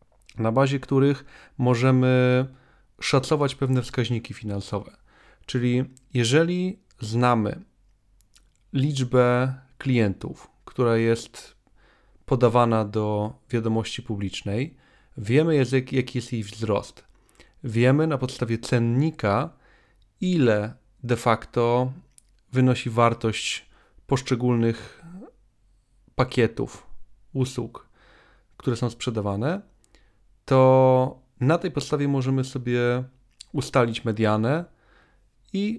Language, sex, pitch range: Polish, male, 115-135 Hz